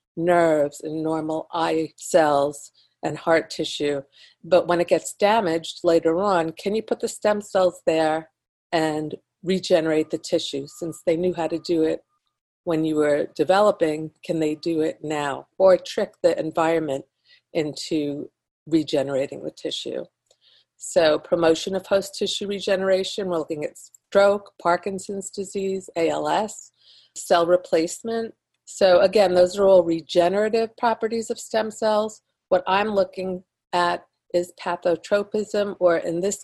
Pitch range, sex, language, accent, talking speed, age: 160-195 Hz, female, English, American, 140 wpm, 50-69